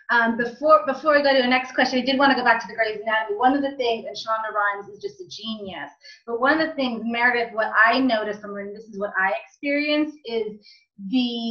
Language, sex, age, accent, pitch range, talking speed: English, female, 30-49, American, 200-240 Hz, 245 wpm